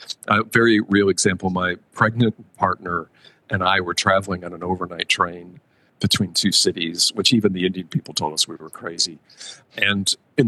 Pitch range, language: 90-120 Hz, English